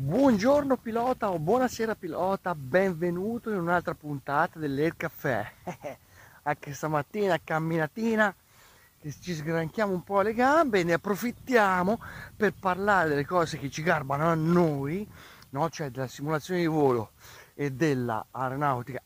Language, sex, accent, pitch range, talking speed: Italian, male, native, 130-195 Hz, 125 wpm